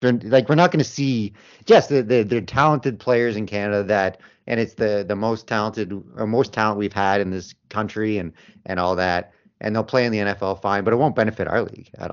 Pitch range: 105-135 Hz